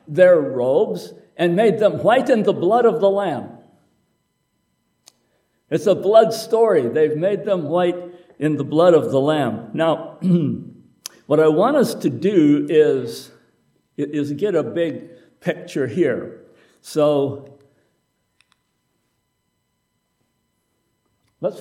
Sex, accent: male, American